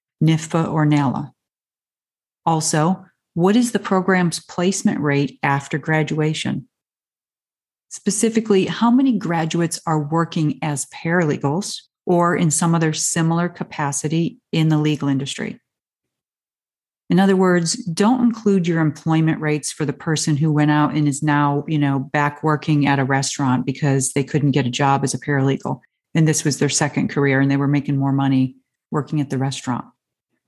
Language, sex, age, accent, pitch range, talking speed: English, female, 40-59, American, 145-185 Hz, 155 wpm